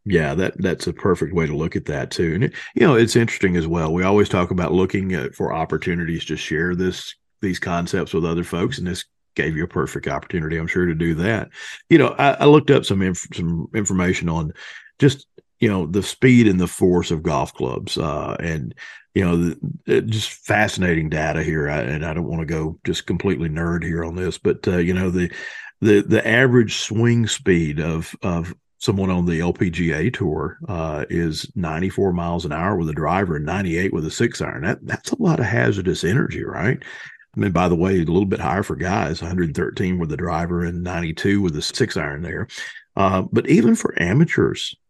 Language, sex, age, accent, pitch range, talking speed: English, male, 40-59, American, 85-110 Hz, 210 wpm